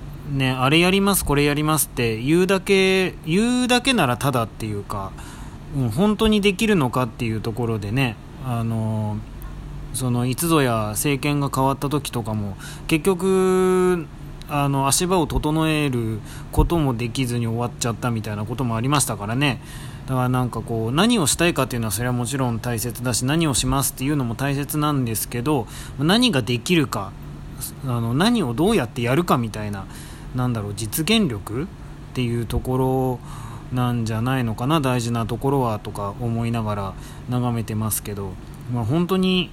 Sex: male